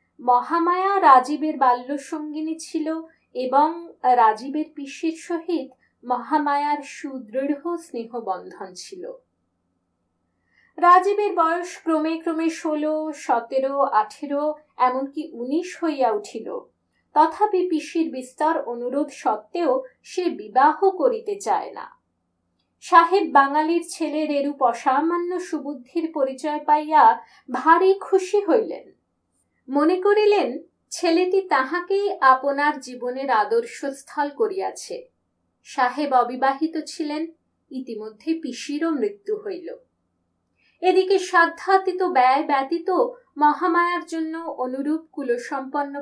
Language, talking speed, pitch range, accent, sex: Bengali, 90 wpm, 275-350 Hz, native, female